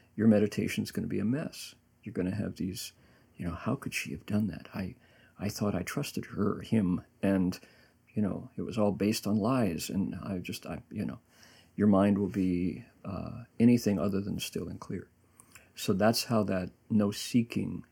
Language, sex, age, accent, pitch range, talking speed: English, male, 50-69, American, 100-115 Hz, 200 wpm